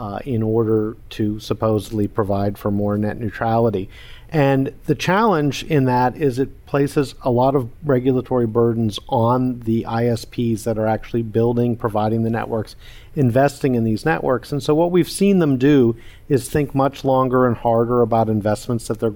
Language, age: English, 50-69